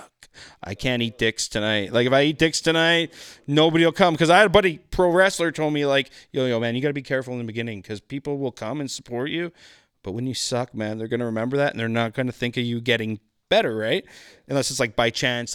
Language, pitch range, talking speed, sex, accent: English, 100-130 Hz, 265 wpm, male, American